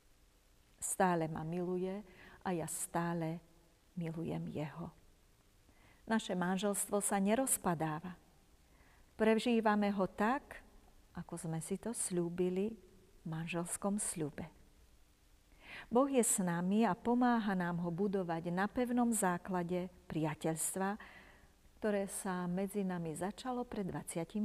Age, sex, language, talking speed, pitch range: 40-59, female, Slovak, 105 wpm, 160-210 Hz